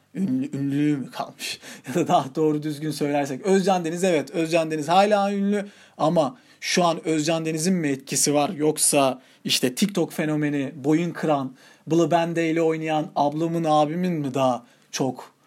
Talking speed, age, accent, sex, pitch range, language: 145 wpm, 40-59, native, male, 150-210 Hz, Turkish